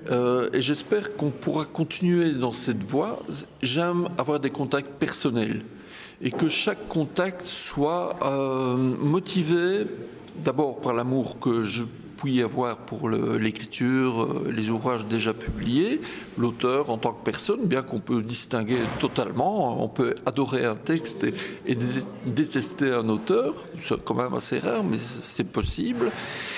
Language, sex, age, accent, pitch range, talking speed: French, male, 60-79, French, 120-165 Hz, 140 wpm